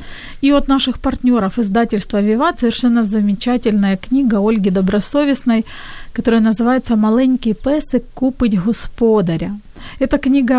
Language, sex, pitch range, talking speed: Ukrainian, female, 220-270 Hz, 110 wpm